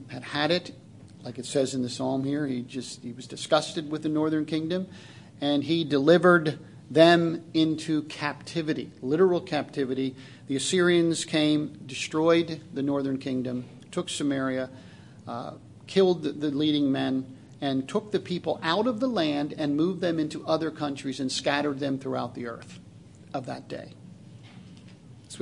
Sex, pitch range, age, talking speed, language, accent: male, 145-220 Hz, 50-69, 155 wpm, English, American